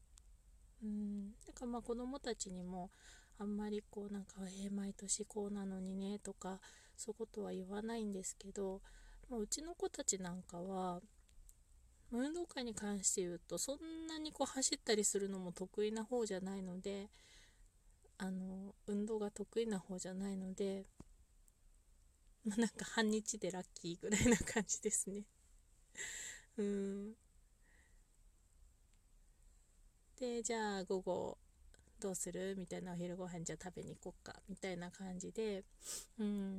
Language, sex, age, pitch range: Japanese, female, 20-39, 175-215 Hz